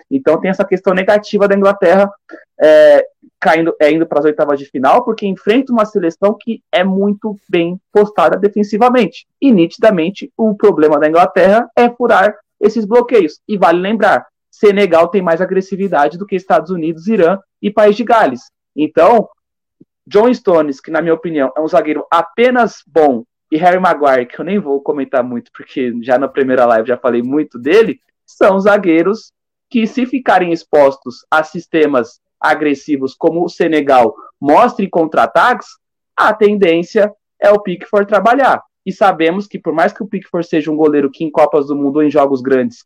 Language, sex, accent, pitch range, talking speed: Portuguese, male, Brazilian, 155-210 Hz, 170 wpm